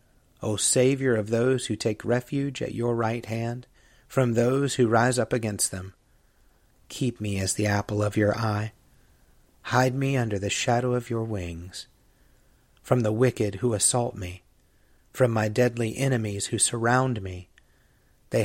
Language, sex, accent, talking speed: English, male, American, 155 wpm